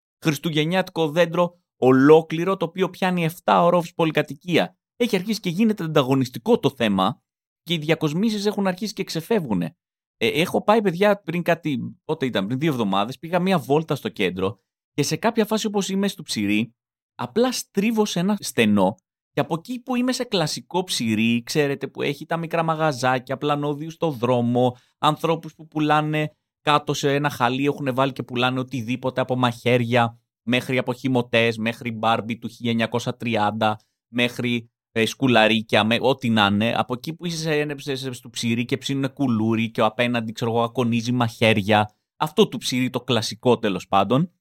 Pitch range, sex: 120-170 Hz, male